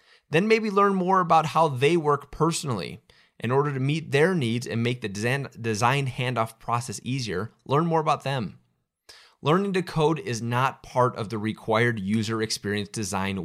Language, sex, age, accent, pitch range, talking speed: English, male, 30-49, American, 110-150 Hz, 170 wpm